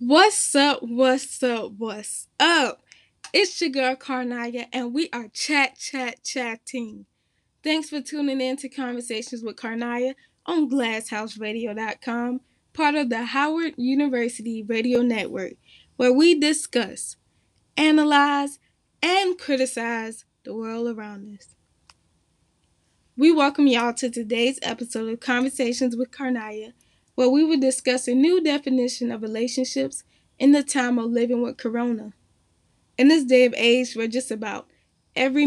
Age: 10-29